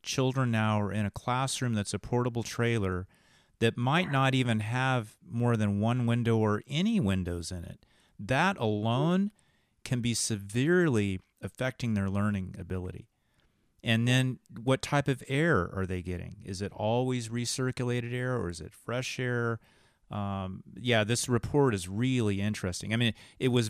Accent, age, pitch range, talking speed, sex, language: American, 40-59, 100-125 Hz, 160 wpm, male, English